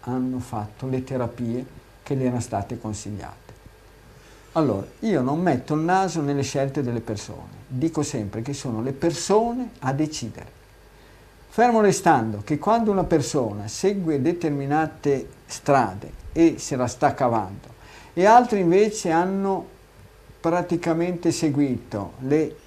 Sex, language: male, Italian